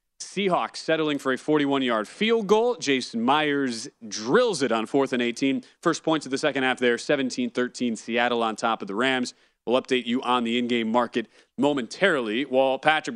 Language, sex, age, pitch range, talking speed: English, male, 30-49, 130-170 Hz, 180 wpm